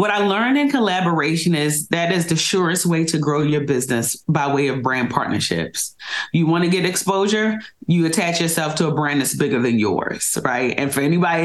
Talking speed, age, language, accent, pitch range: 205 wpm, 30-49, English, American, 150-180 Hz